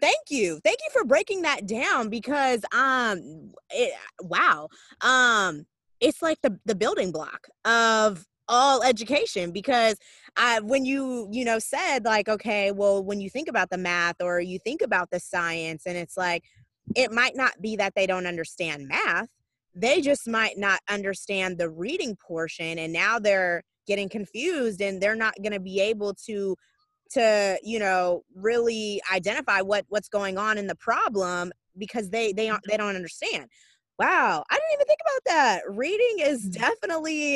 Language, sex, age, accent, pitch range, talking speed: English, female, 20-39, American, 185-240 Hz, 170 wpm